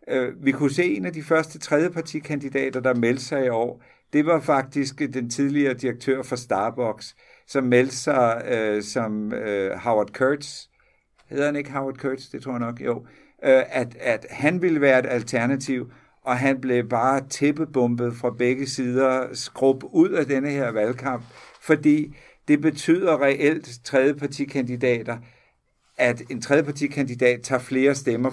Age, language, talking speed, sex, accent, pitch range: 60-79, Danish, 150 wpm, male, native, 120-145 Hz